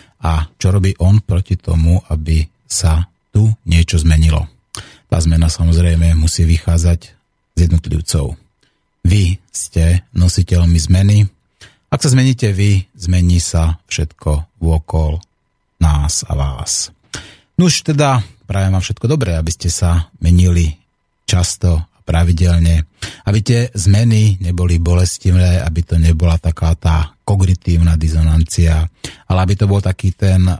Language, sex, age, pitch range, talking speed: Slovak, male, 30-49, 85-100 Hz, 125 wpm